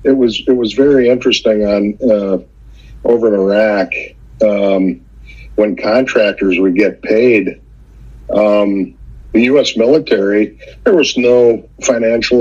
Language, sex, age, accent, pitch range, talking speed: English, male, 50-69, American, 105-125 Hz, 120 wpm